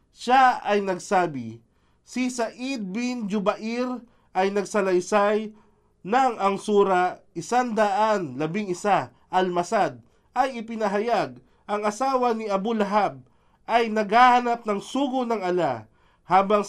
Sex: male